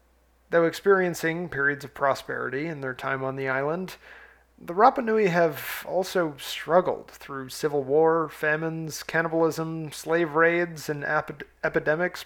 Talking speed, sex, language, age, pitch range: 125 wpm, male, English, 30-49, 135-165 Hz